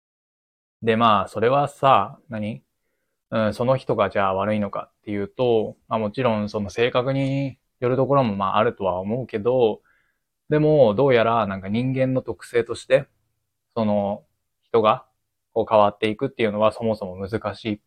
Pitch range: 105-130 Hz